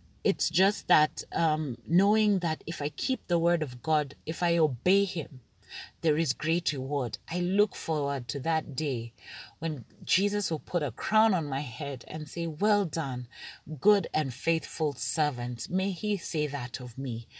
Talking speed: 170 wpm